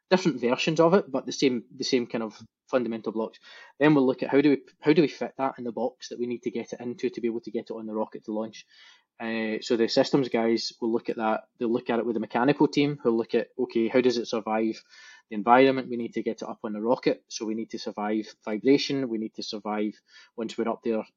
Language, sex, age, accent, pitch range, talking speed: English, male, 20-39, British, 115-130 Hz, 270 wpm